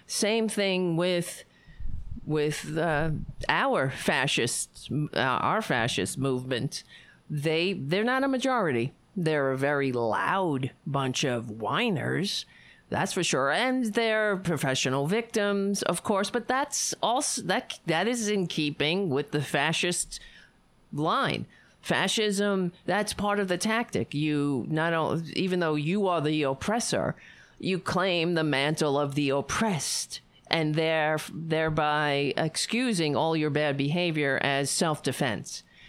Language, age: English, 50-69